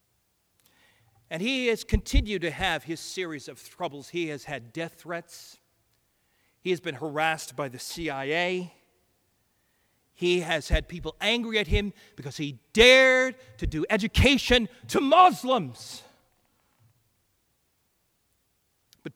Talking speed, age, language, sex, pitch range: 120 wpm, 40-59, English, male, 135-195 Hz